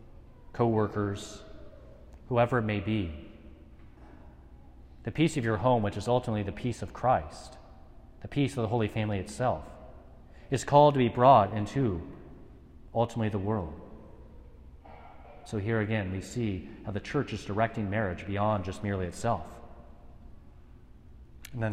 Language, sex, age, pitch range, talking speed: English, male, 30-49, 90-120 Hz, 140 wpm